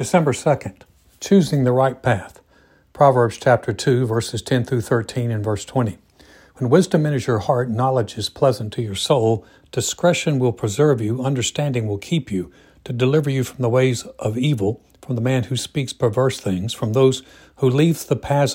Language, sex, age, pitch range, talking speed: English, male, 60-79, 110-135 Hz, 180 wpm